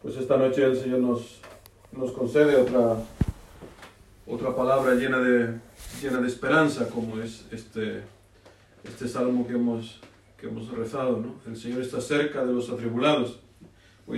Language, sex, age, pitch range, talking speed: Spanish, male, 40-59, 105-120 Hz, 150 wpm